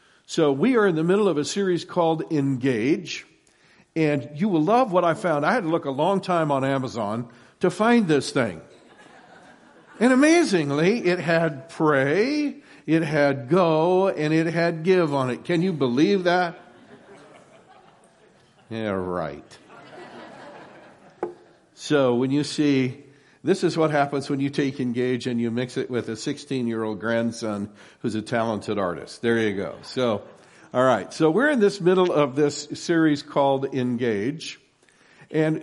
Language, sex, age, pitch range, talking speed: English, male, 60-79, 135-180 Hz, 155 wpm